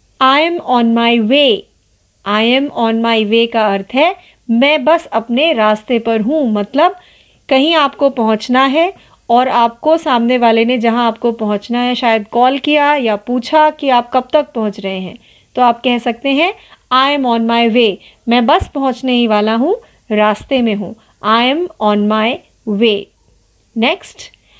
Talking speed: 120 wpm